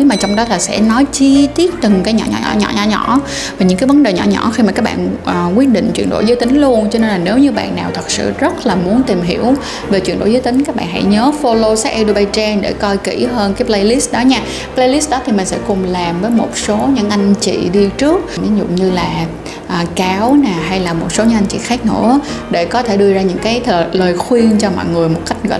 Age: 20-39